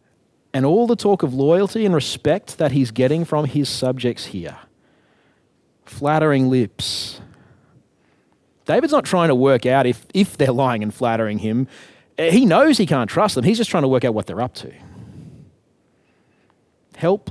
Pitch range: 130-195 Hz